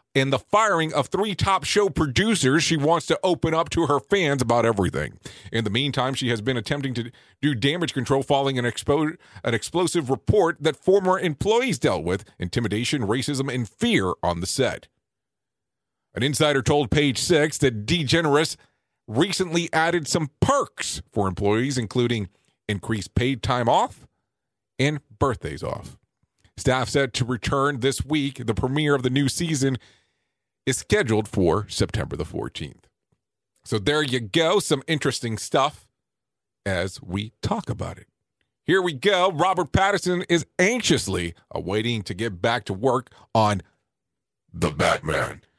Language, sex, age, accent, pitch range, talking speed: English, male, 40-59, American, 115-155 Hz, 150 wpm